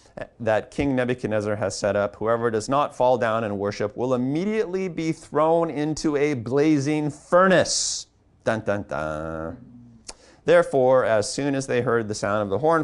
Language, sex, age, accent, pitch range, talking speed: English, male, 40-59, American, 100-145 Hz, 150 wpm